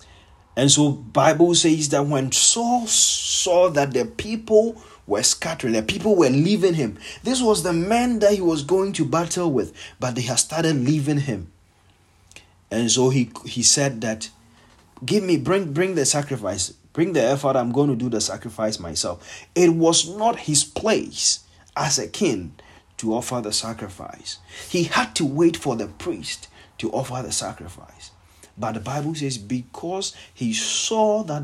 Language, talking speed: English, 170 wpm